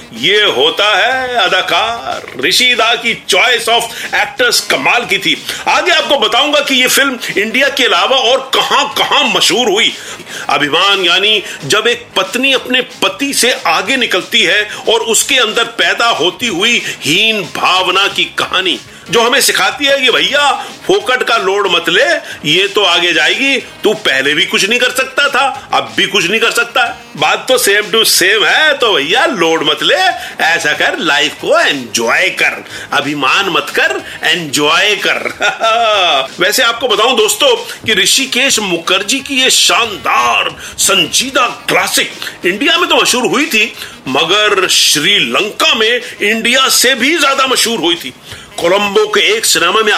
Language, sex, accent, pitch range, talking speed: Hindi, male, native, 220-360 Hz, 160 wpm